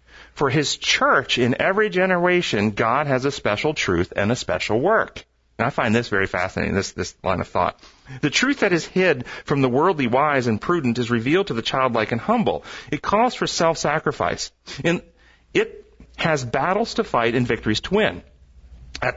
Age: 40-59